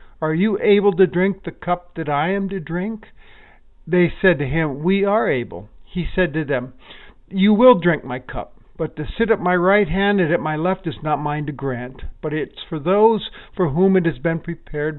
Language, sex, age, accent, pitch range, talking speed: English, male, 50-69, American, 145-195 Hz, 220 wpm